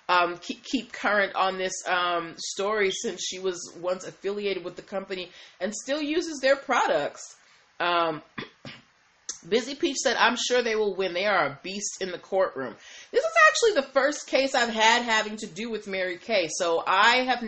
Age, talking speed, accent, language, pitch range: 30-49, 185 wpm, American, English, 180-225 Hz